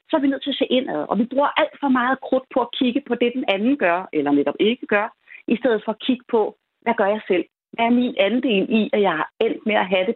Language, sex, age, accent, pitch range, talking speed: Danish, female, 30-49, native, 185-260 Hz, 295 wpm